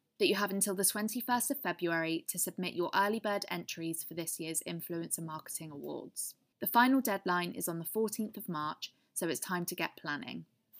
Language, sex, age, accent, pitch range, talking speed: English, female, 20-39, British, 165-205 Hz, 195 wpm